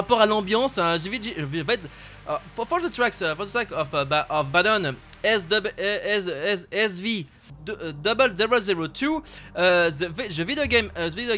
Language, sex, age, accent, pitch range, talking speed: French, male, 20-39, French, 165-240 Hz, 190 wpm